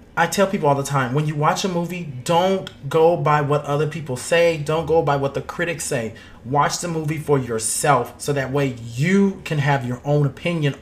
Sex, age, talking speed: male, 30-49, 215 wpm